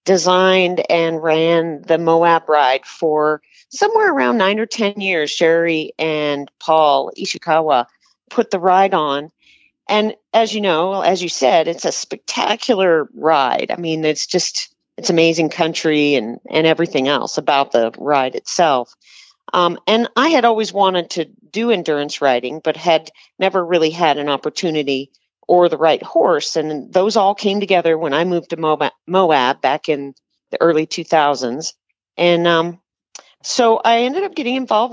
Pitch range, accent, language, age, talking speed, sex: 160-215 Hz, American, English, 40-59, 160 wpm, female